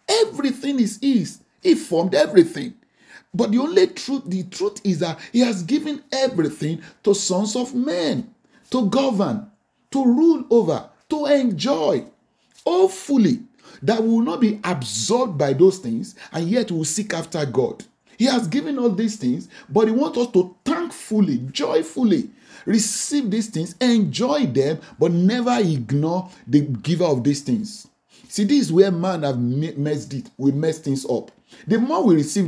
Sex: male